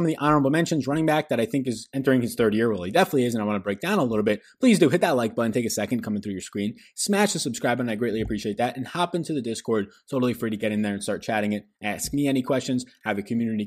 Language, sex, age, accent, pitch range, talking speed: English, male, 20-39, American, 105-130 Hz, 305 wpm